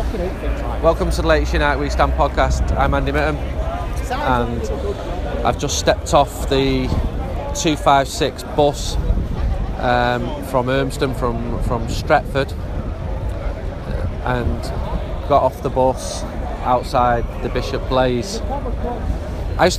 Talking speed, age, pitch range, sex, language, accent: 110 wpm, 30-49, 90-130 Hz, male, English, British